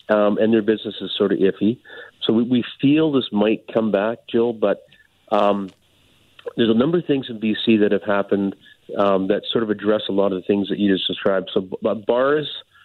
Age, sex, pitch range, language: 40-59, male, 95-110 Hz, English